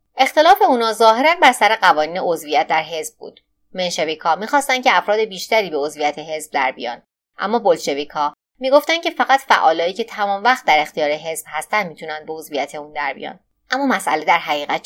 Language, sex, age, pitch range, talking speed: Persian, female, 30-49, 155-230 Hz, 165 wpm